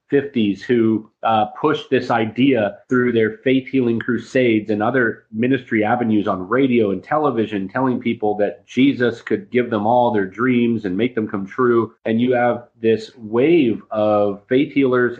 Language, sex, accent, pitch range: English, male, American, 105-130 Hz